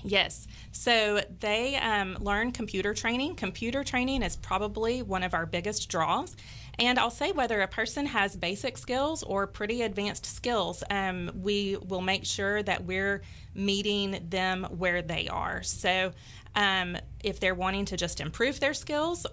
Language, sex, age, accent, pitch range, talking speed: English, female, 30-49, American, 180-220 Hz, 160 wpm